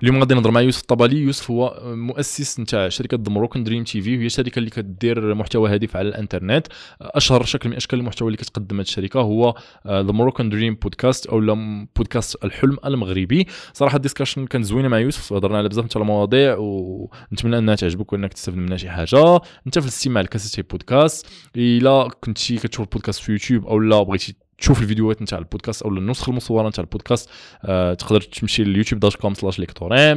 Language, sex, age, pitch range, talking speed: Arabic, male, 20-39, 105-125 Hz, 175 wpm